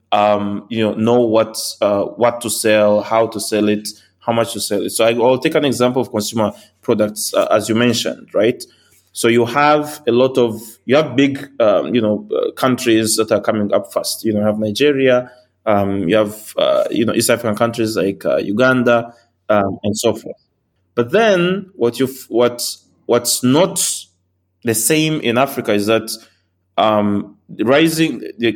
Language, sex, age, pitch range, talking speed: English, male, 20-39, 105-125 Hz, 185 wpm